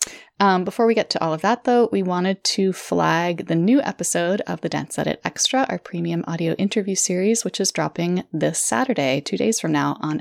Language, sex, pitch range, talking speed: English, female, 165-200 Hz, 210 wpm